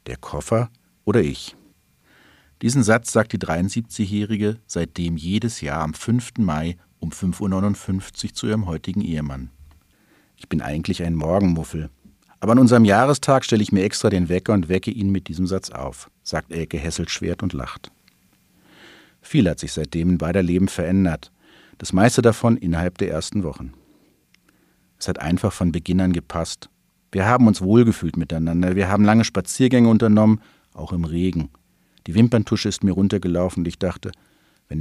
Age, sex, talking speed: 50-69, male, 160 wpm